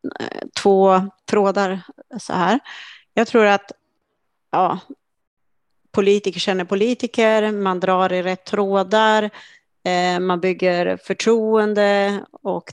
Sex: female